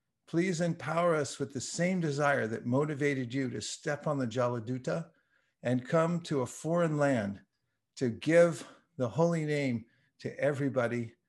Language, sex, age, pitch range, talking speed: English, male, 50-69, 125-155 Hz, 150 wpm